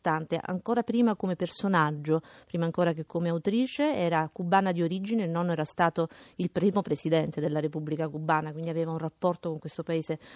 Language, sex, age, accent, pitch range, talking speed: Italian, female, 40-59, native, 160-200 Hz, 175 wpm